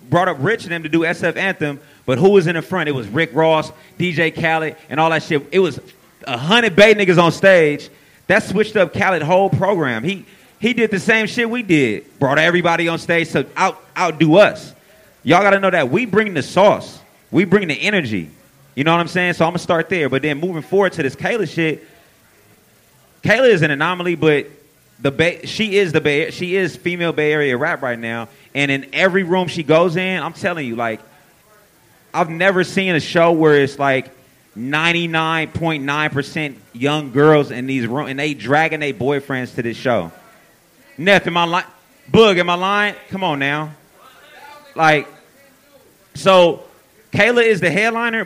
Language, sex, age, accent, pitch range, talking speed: English, male, 30-49, American, 150-195 Hz, 195 wpm